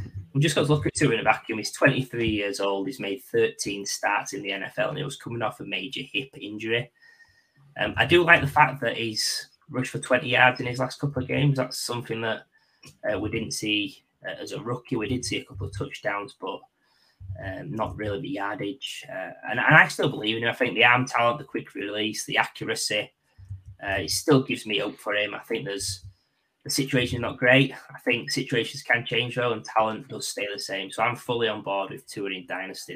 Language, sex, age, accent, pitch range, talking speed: English, male, 20-39, British, 100-130 Hz, 225 wpm